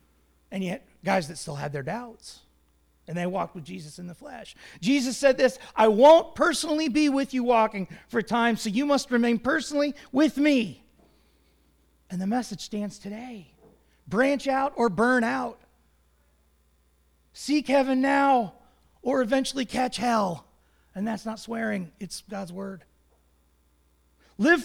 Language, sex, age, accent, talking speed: English, male, 30-49, American, 145 wpm